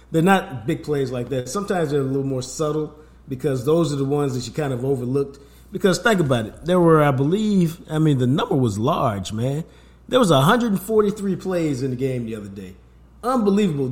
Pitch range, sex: 125-165 Hz, male